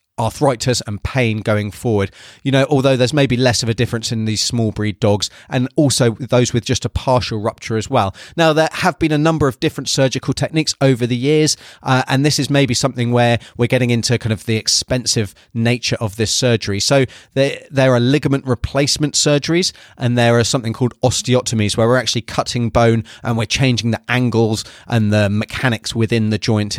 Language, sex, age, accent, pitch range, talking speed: English, male, 30-49, British, 110-135 Hz, 200 wpm